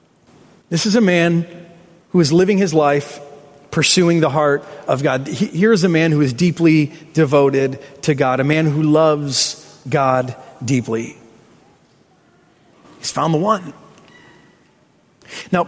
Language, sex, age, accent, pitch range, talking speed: English, male, 40-59, American, 145-195 Hz, 135 wpm